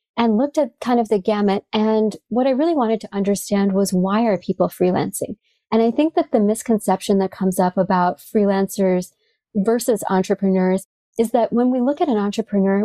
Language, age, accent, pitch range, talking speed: English, 30-49, American, 190-230 Hz, 185 wpm